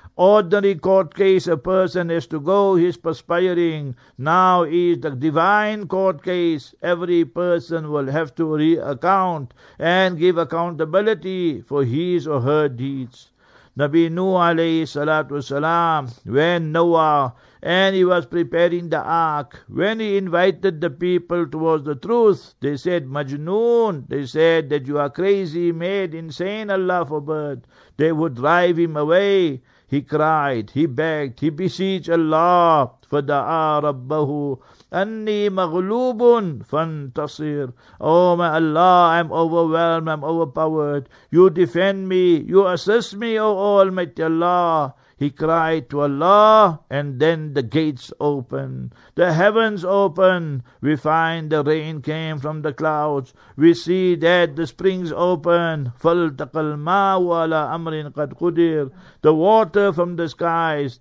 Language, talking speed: English, 130 wpm